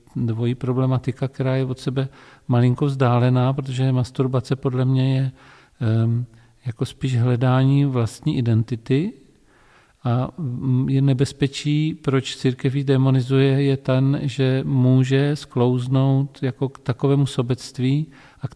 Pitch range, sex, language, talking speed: 120-135 Hz, male, Czech, 115 wpm